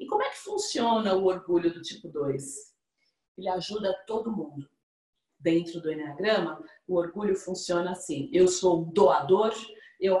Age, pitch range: 50-69, 175-220 Hz